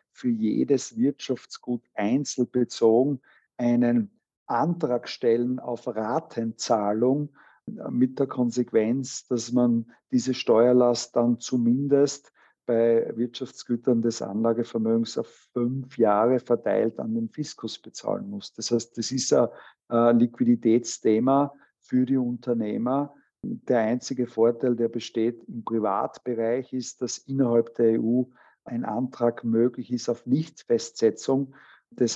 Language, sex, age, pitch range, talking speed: German, male, 50-69, 115-130 Hz, 110 wpm